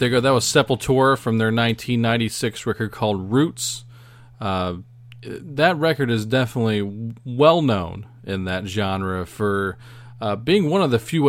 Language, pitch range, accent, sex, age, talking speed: English, 95-120 Hz, American, male, 40-59, 145 wpm